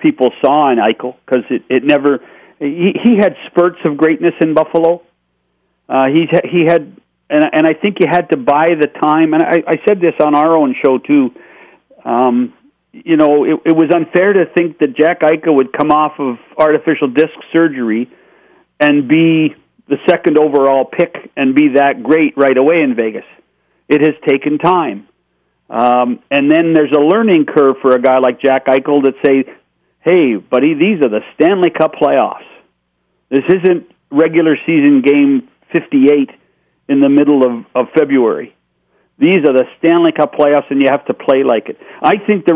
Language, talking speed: English, 180 wpm